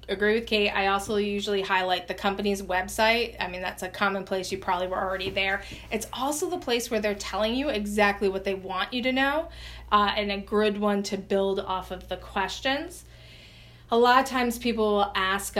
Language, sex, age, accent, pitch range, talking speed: English, female, 20-39, American, 190-230 Hz, 205 wpm